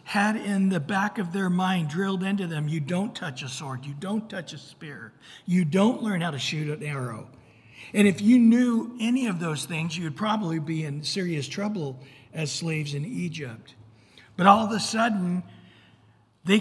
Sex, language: male, English